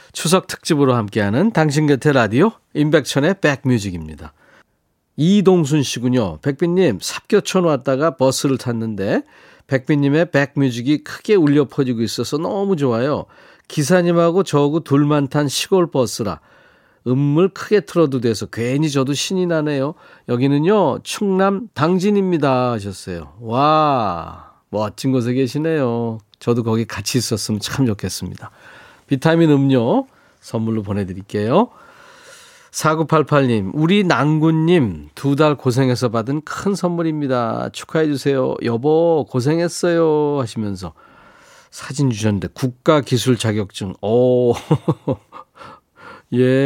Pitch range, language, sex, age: 120-160 Hz, Korean, male, 40-59